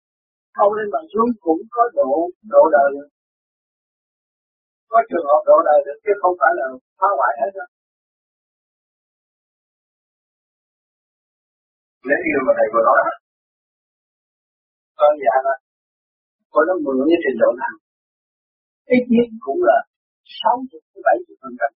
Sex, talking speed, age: male, 125 wpm, 50-69